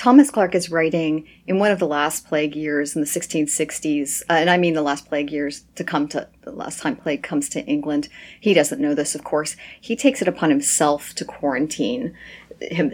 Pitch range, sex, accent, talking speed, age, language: 150-175 Hz, female, American, 215 wpm, 40-59, English